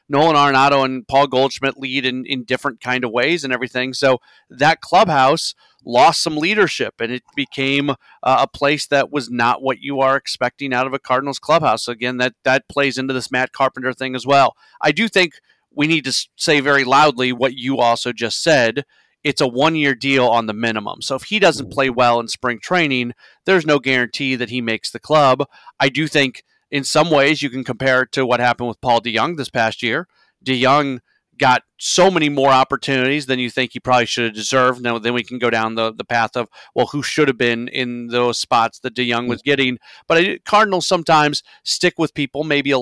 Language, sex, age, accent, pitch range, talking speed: English, male, 40-59, American, 125-145 Hz, 215 wpm